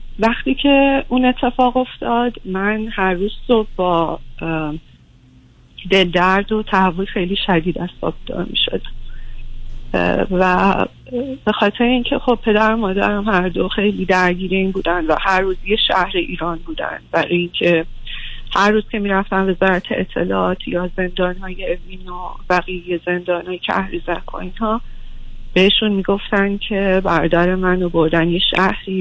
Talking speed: 140 wpm